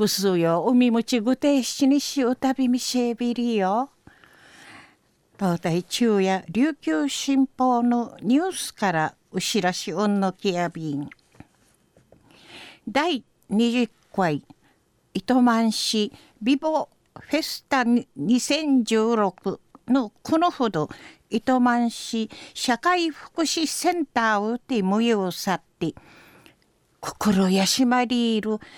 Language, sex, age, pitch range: Japanese, female, 50-69, 205-275 Hz